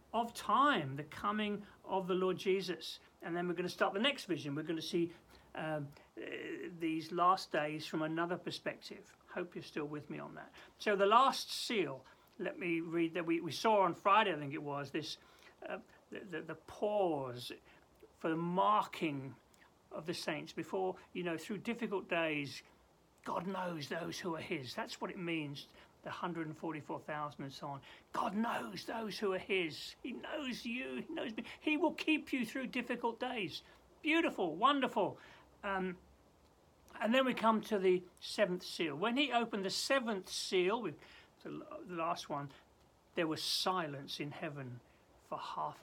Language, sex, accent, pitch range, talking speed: English, male, British, 155-220 Hz, 175 wpm